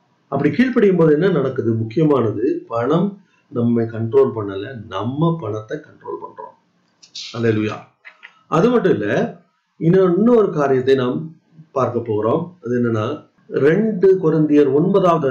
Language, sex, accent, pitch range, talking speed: Tamil, male, native, 125-200 Hz, 60 wpm